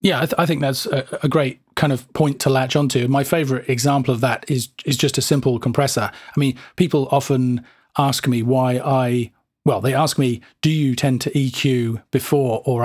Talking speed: 210 wpm